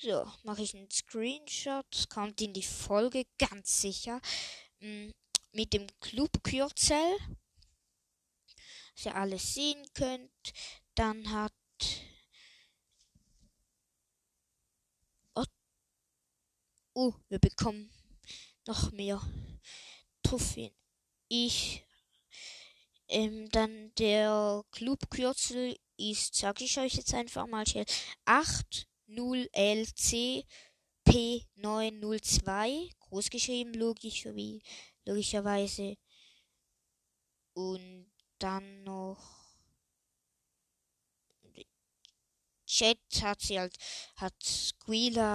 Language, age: German, 20-39